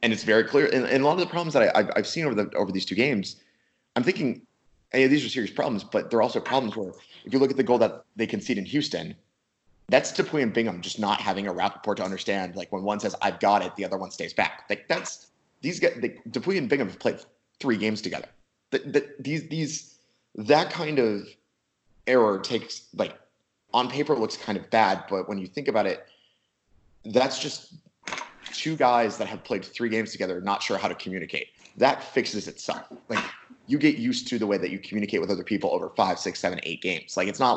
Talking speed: 235 wpm